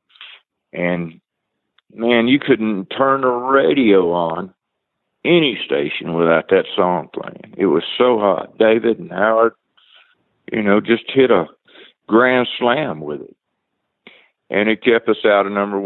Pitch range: 95-120 Hz